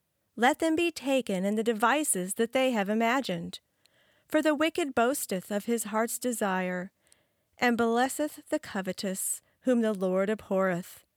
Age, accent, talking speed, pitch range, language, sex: 40-59, American, 145 wpm, 195-255 Hz, English, female